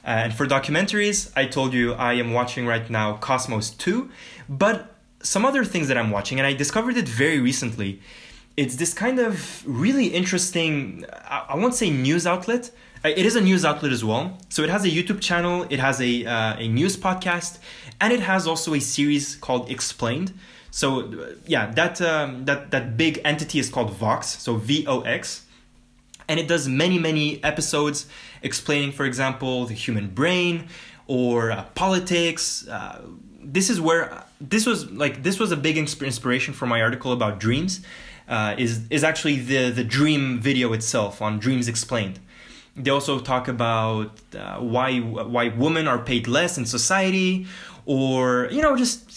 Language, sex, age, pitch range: English, male, 20-39, 125-180 Hz